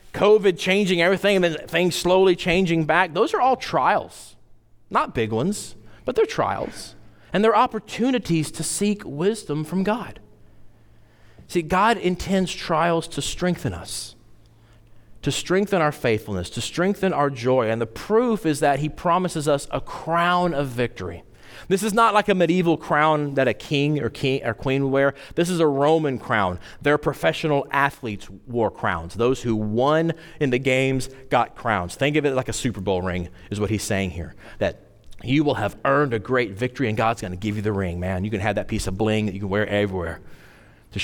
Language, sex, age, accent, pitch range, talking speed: English, male, 40-59, American, 105-160 Hz, 190 wpm